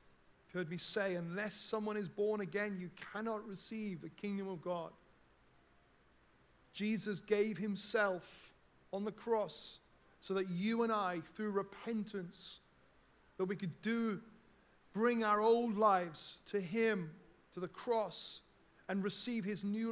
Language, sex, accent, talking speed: English, male, British, 140 wpm